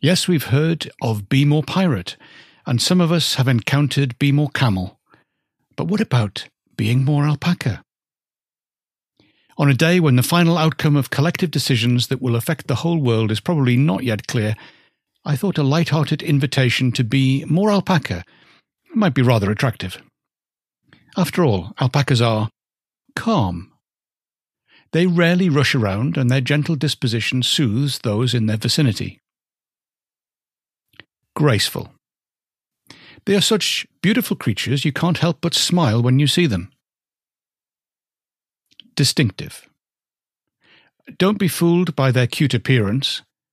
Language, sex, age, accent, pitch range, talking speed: English, male, 60-79, British, 125-165 Hz, 135 wpm